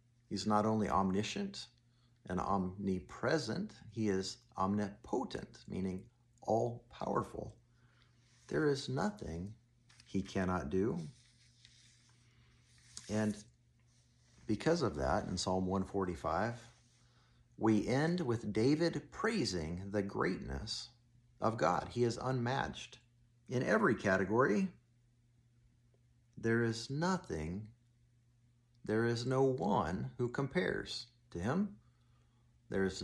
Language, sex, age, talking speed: English, male, 50-69, 95 wpm